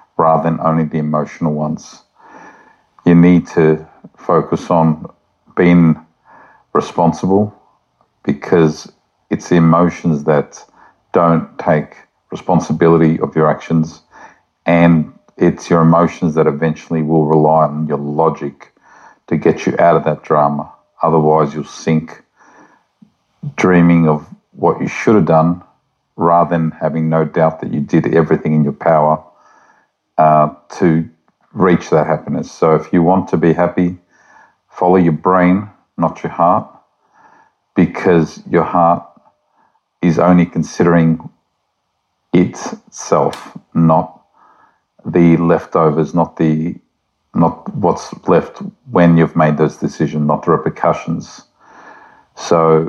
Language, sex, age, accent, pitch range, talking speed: English, male, 50-69, Australian, 80-85 Hz, 120 wpm